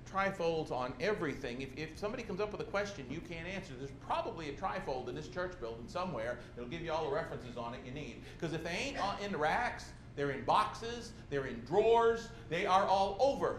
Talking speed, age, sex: 220 wpm, 50-69, male